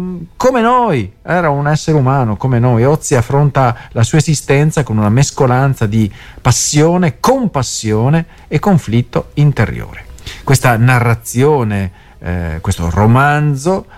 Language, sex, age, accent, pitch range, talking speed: Italian, male, 40-59, native, 95-125 Hz, 115 wpm